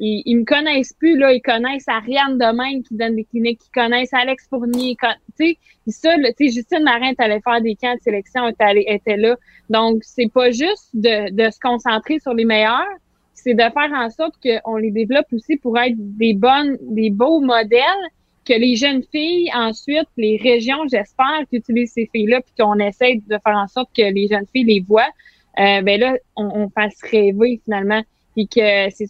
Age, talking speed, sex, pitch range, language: 20-39, 200 wpm, female, 215-255 Hz, French